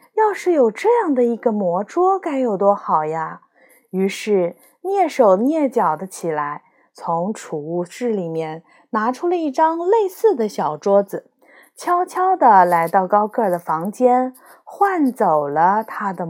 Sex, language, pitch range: female, Chinese, 190-295 Hz